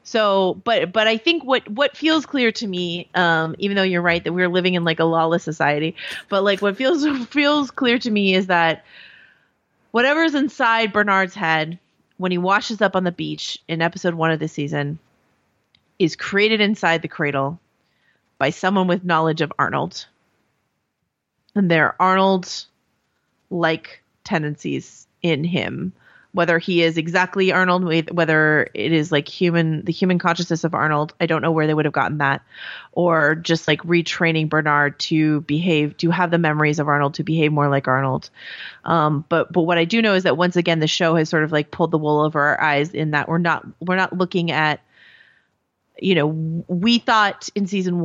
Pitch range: 155-190 Hz